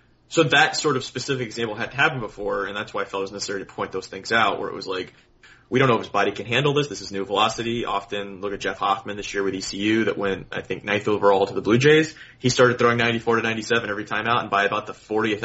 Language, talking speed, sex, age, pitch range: English, 285 wpm, male, 20-39, 100-125 Hz